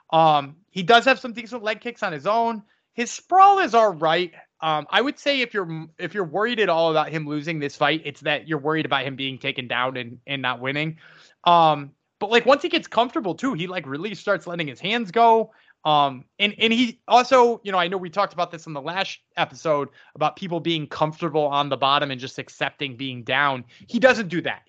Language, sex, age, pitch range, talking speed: English, male, 20-39, 150-220 Hz, 230 wpm